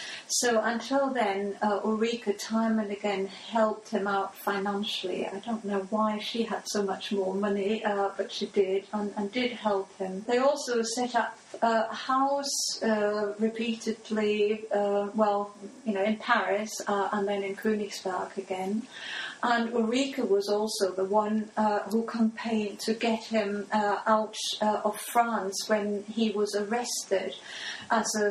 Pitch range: 200-230 Hz